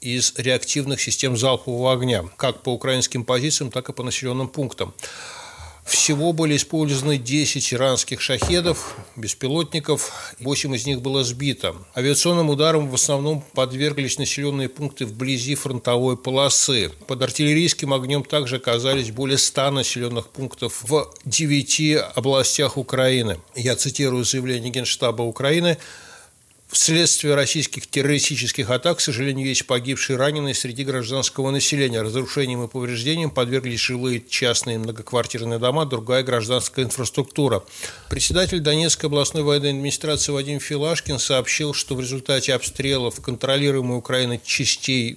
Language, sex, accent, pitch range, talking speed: Russian, male, native, 125-145 Hz, 120 wpm